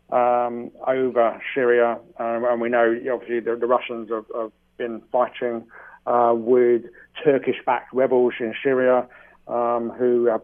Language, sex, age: English, male, 40-59